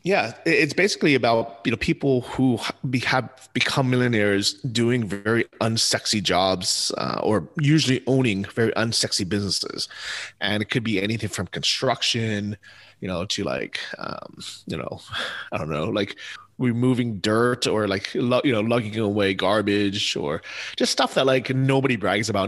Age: 30-49